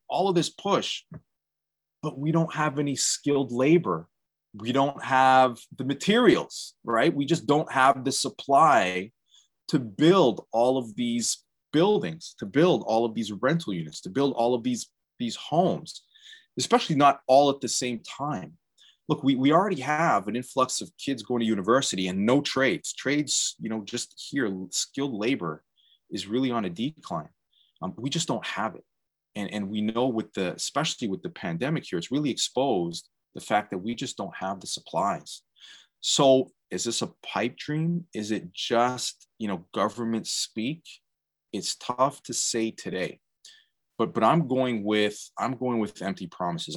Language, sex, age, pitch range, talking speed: English, male, 30-49, 105-140 Hz, 170 wpm